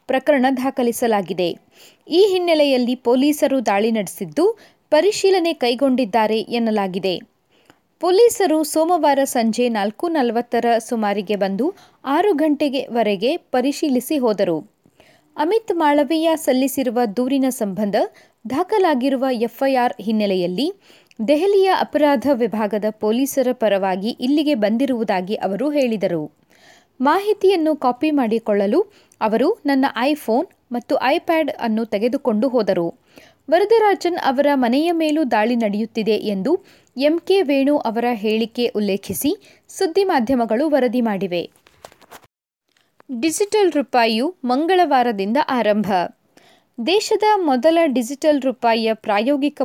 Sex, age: female, 20-39